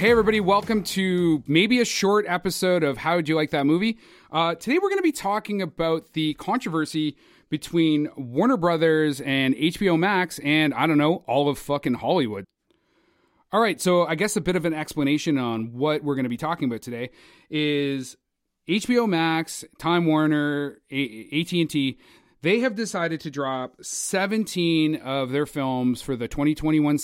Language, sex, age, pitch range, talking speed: English, male, 30-49, 140-175 Hz, 170 wpm